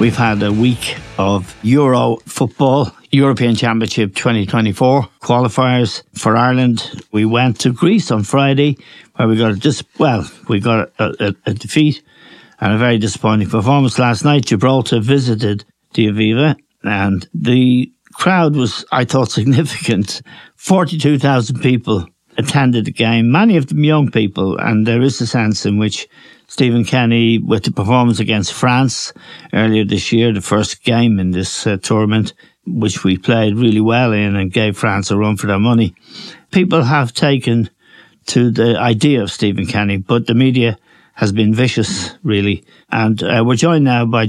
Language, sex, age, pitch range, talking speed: English, male, 60-79, 110-130 Hz, 165 wpm